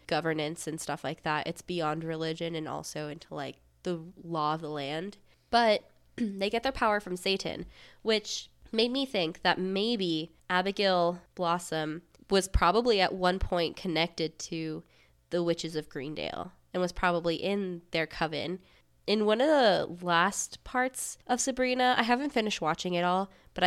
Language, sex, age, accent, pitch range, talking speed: English, female, 20-39, American, 160-200 Hz, 160 wpm